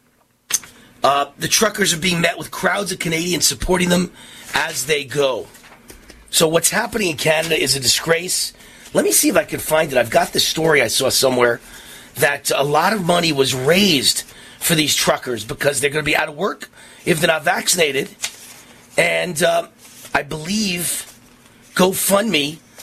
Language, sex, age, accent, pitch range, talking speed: English, male, 40-59, American, 145-190 Hz, 170 wpm